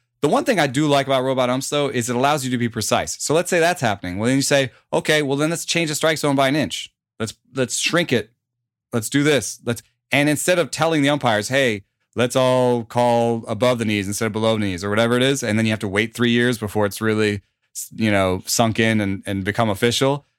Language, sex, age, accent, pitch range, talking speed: English, male, 30-49, American, 105-130 Hz, 250 wpm